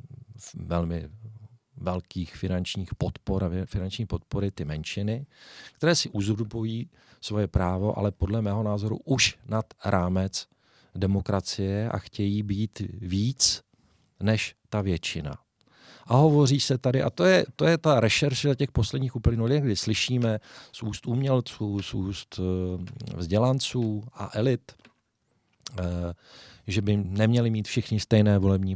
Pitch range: 95-115 Hz